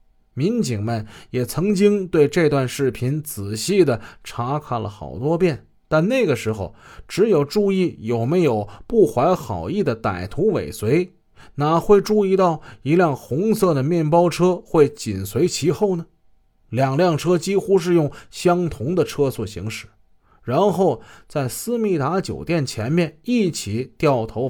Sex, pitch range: male, 115-175 Hz